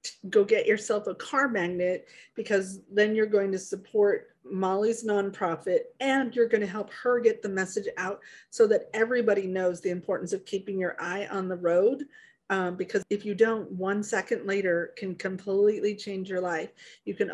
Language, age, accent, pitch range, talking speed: English, 40-59, American, 185-215 Hz, 180 wpm